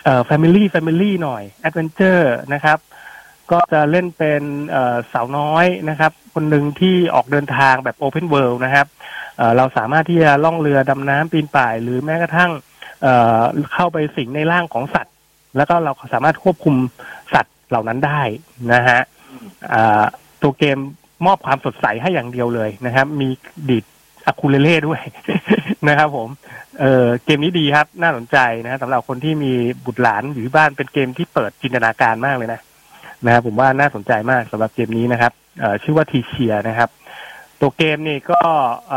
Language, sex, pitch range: Thai, male, 130-165 Hz